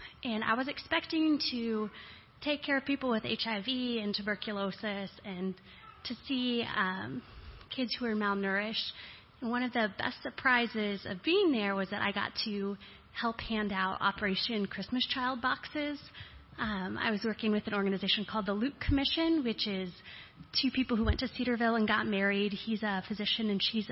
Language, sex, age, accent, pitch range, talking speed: English, female, 30-49, American, 200-240 Hz, 175 wpm